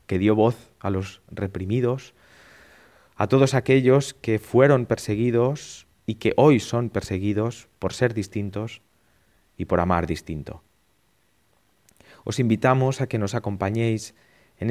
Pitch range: 95-120 Hz